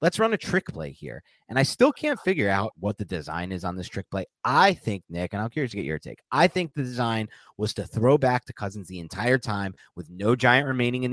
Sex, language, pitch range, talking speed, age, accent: male, English, 95-140 Hz, 260 wpm, 30-49, American